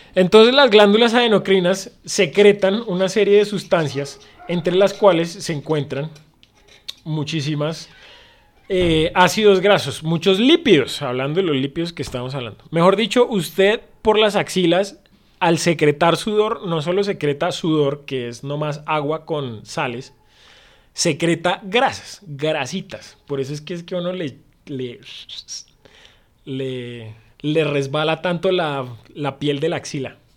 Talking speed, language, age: 135 wpm, Spanish, 30-49